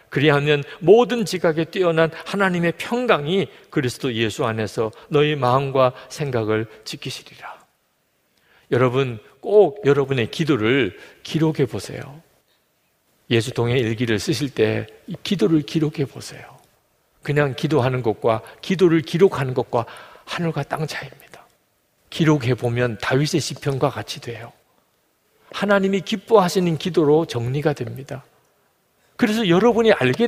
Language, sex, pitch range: Korean, male, 120-160 Hz